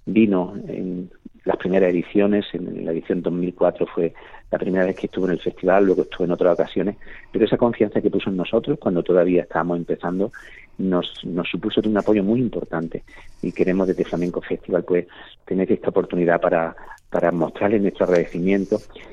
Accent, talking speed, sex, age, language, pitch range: Spanish, 175 wpm, male, 40-59, Spanish, 90-105 Hz